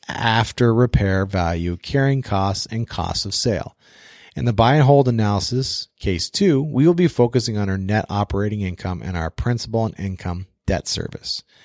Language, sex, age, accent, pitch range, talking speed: English, male, 40-59, American, 95-125 Hz, 170 wpm